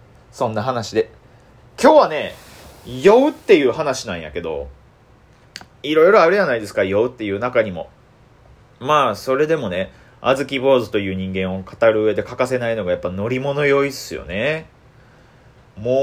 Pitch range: 120-150 Hz